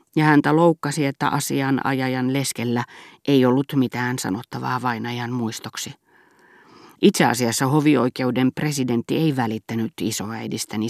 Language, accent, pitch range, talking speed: Finnish, native, 120-155 Hz, 110 wpm